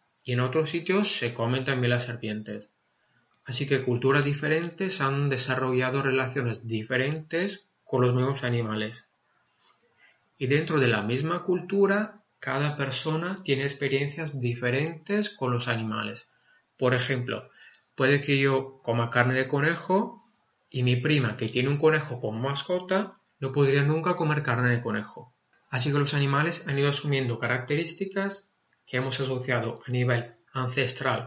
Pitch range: 125-155 Hz